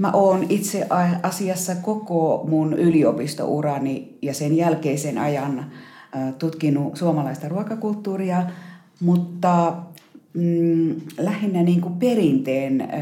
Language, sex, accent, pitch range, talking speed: Finnish, female, native, 145-185 Hz, 90 wpm